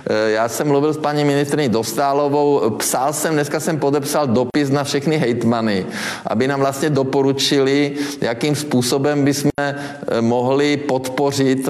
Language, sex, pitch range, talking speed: Czech, male, 125-145 Hz, 135 wpm